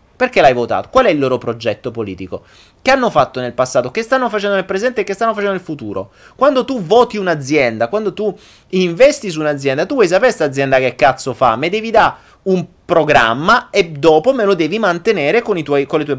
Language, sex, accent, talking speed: Italian, male, native, 215 wpm